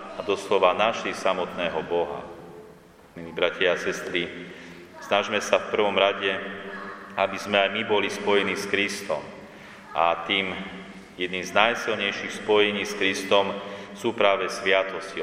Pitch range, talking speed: 95-110 Hz, 130 wpm